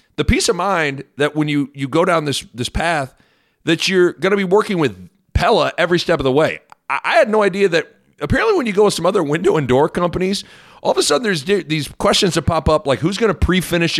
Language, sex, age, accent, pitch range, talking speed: English, male, 40-59, American, 120-175 Hz, 255 wpm